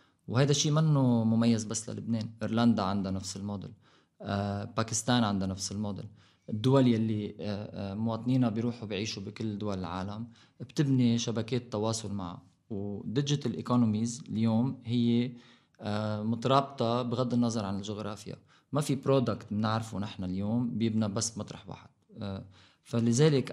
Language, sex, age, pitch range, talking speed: English, male, 20-39, 105-125 Hz, 115 wpm